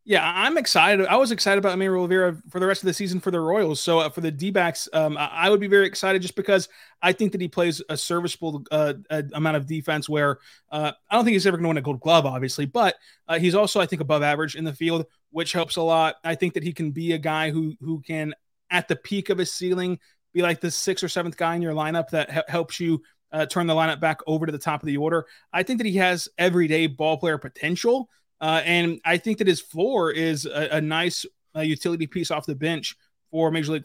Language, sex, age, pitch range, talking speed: English, male, 30-49, 155-180 Hz, 250 wpm